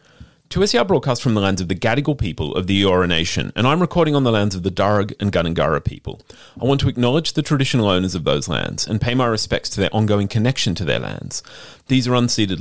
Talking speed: 245 wpm